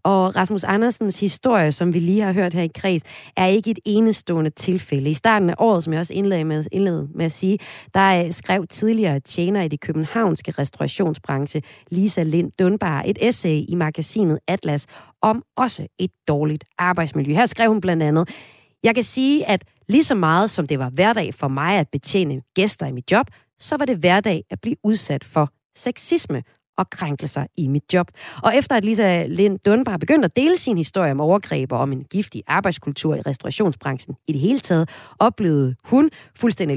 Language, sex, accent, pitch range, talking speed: Danish, female, native, 155-220 Hz, 190 wpm